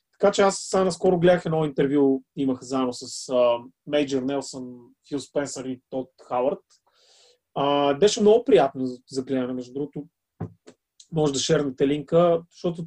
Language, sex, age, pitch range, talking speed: Bulgarian, male, 30-49, 140-180 Hz, 135 wpm